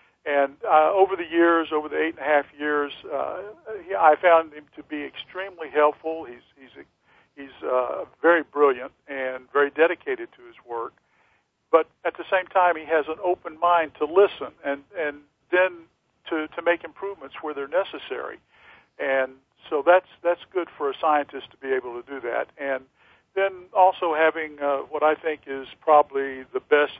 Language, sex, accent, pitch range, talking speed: English, male, American, 135-165 Hz, 180 wpm